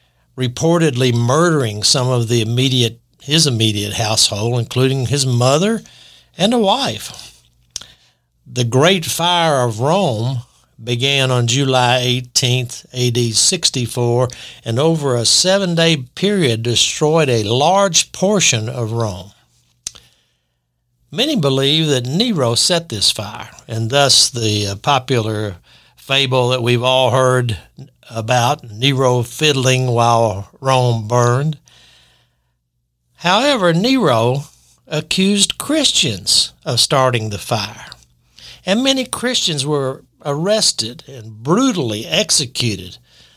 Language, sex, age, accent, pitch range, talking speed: English, male, 60-79, American, 115-155 Hz, 105 wpm